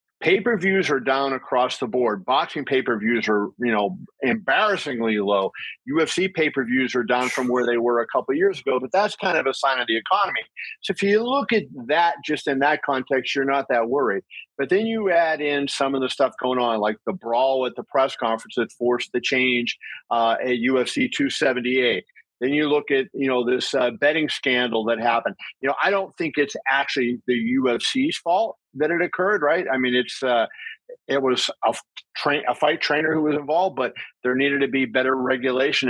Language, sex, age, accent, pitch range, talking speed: English, male, 50-69, American, 125-145 Hz, 205 wpm